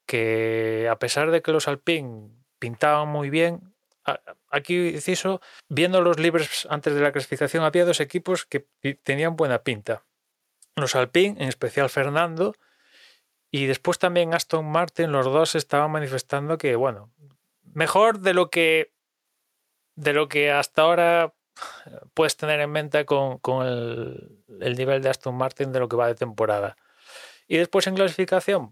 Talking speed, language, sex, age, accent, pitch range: 155 wpm, Spanish, male, 30-49, Spanish, 120-160 Hz